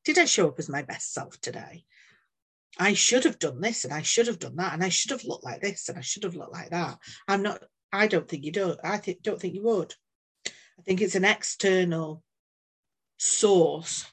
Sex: female